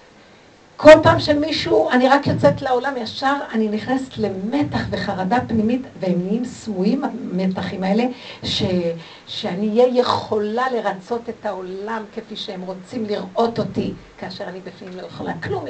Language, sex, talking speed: Hebrew, female, 140 wpm